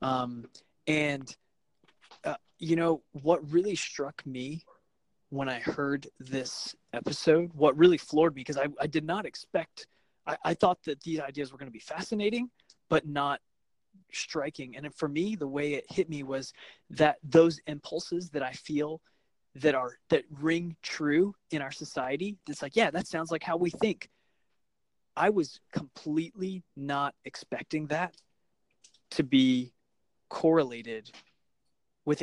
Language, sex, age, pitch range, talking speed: English, male, 20-39, 140-170 Hz, 155 wpm